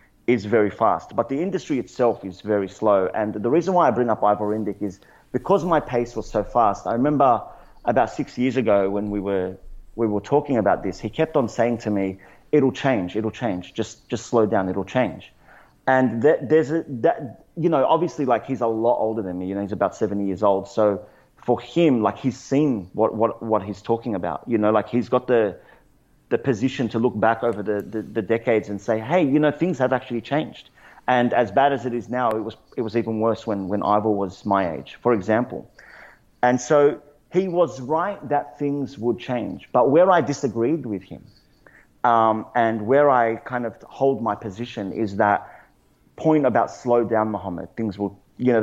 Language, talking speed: English, 210 wpm